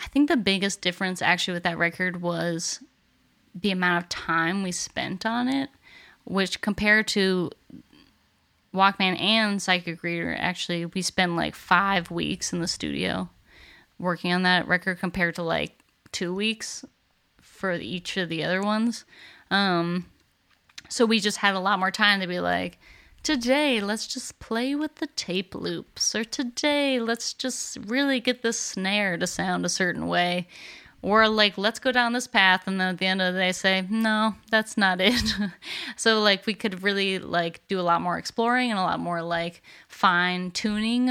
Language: English